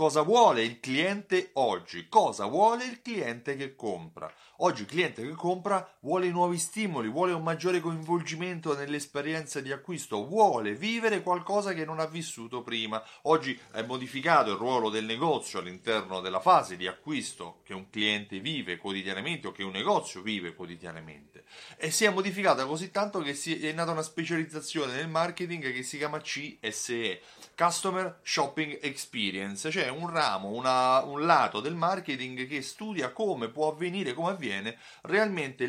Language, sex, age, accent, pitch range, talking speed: Italian, male, 30-49, native, 115-175 Hz, 155 wpm